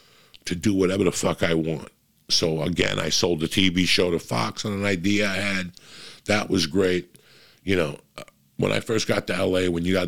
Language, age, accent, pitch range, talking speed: English, 50-69, American, 90-130 Hz, 210 wpm